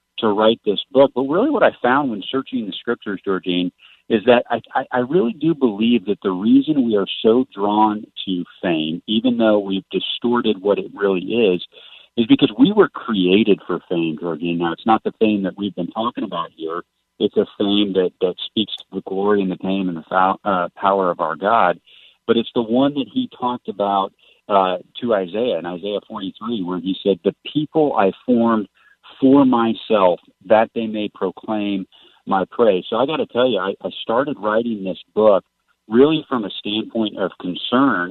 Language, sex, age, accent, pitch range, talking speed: English, male, 40-59, American, 95-120 Hz, 195 wpm